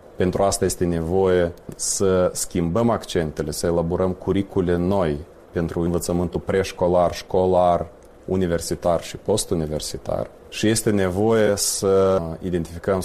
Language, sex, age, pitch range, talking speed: Romanian, male, 30-49, 85-95 Hz, 105 wpm